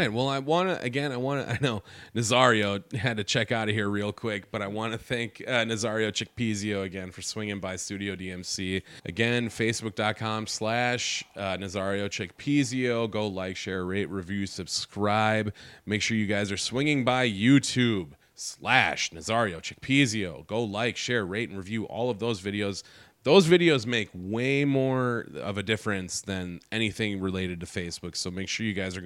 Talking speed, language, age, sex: 175 wpm, English, 30-49, male